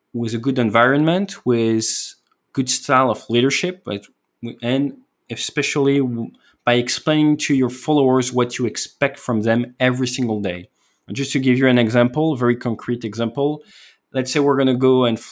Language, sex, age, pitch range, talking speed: English, male, 20-39, 110-130 Hz, 170 wpm